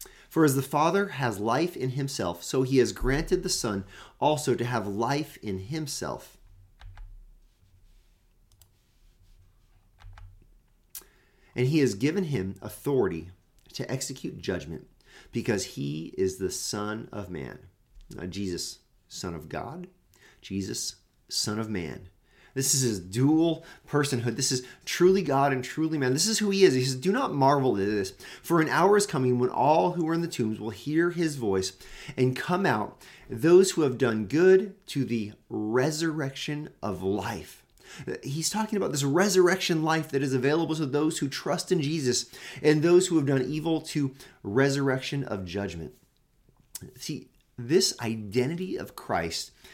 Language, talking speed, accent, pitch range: English, 155 wpm, American, 100-155 Hz